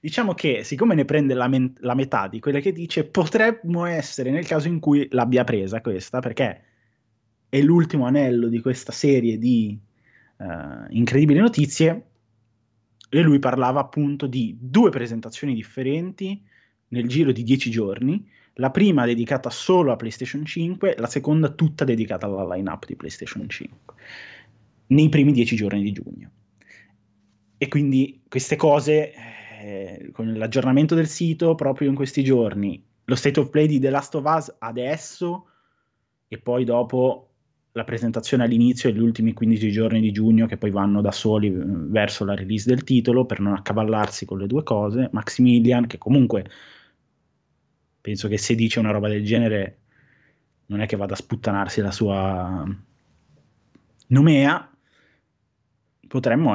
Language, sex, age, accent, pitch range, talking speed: Italian, male, 20-39, native, 110-145 Hz, 145 wpm